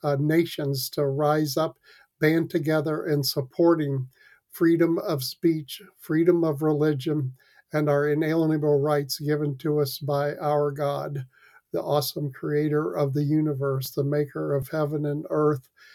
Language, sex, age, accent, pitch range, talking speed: English, male, 50-69, American, 145-165 Hz, 140 wpm